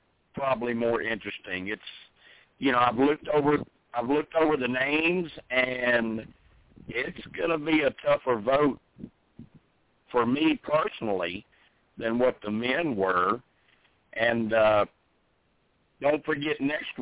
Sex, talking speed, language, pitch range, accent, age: male, 125 wpm, English, 110-135 Hz, American, 60-79